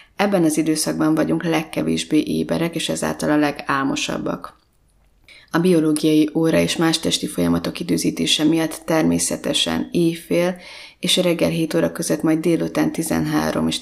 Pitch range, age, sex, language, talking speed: 150-170 Hz, 30-49, female, Hungarian, 130 wpm